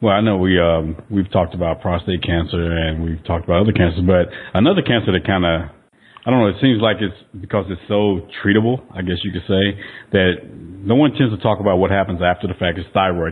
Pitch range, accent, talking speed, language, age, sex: 85-100 Hz, American, 235 wpm, English, 40-59, male